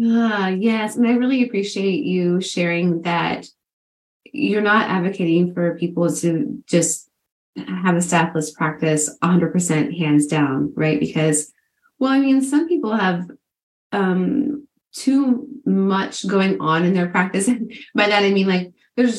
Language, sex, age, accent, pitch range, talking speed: English, female, 20-39, American, 165-210 Hz, 145 wpm